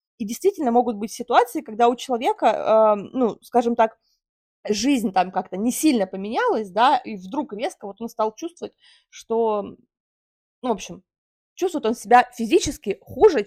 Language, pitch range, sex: Russian, 210-275 Hz, female